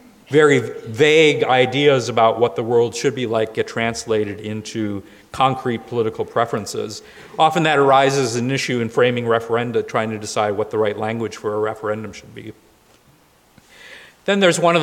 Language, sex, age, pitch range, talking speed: English, male, 40-59, 115-135 Hz, 165 wpm